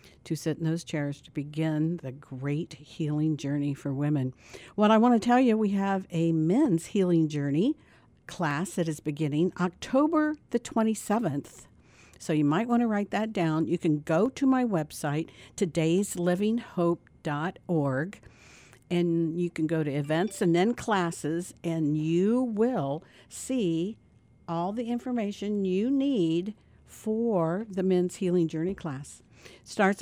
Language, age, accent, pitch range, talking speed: English, 60-79, American, 160-205 Hz, 145 wpm